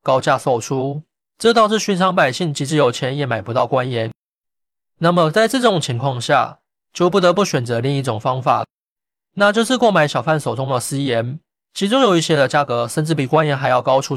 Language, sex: Chinese, male